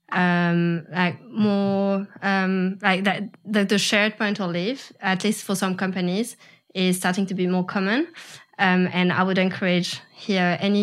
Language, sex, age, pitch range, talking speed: English, female, 20-39, 180-200 Hz, 160 wpm